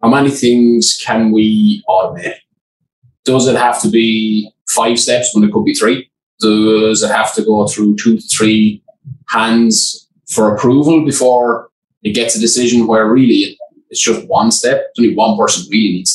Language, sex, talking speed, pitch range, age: English, male, 175 wpm, 110-125 Hz, 20-39